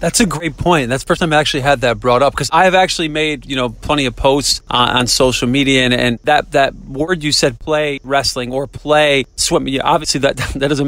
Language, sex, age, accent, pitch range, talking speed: English, male, 30-49, American, 130-175 Hz, 250 wpm